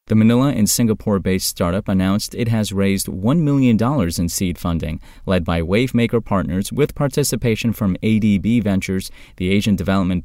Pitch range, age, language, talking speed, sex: 85-110 Hz, 30-49, English, 150 wpm, male